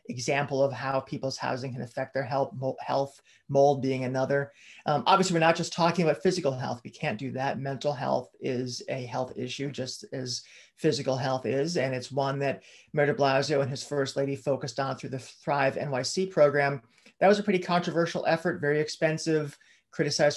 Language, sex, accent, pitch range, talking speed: English, male, American, 135-155 Hz, 190 wpm